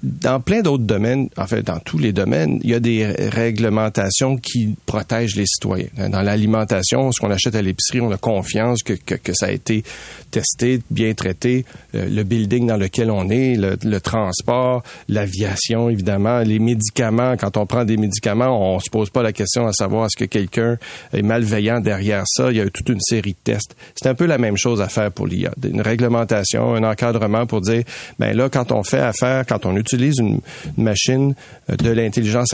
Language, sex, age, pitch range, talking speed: French, male, 40-59, 105-125 Hz, 205 wpm